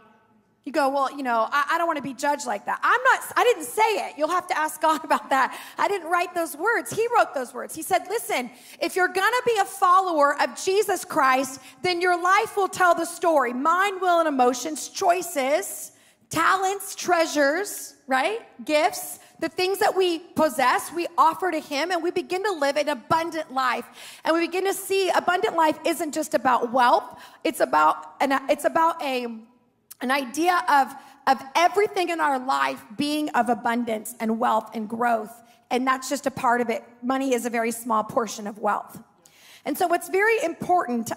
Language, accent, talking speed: English, American, 195 wpm